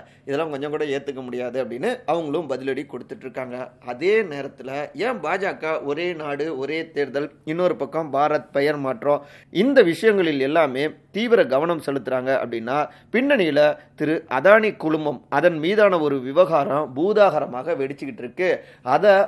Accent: native